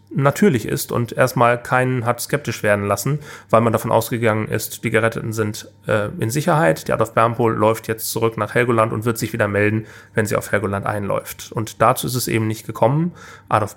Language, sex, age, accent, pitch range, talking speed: German, male, 30-49, German, 110-135 Hz, 200 wpm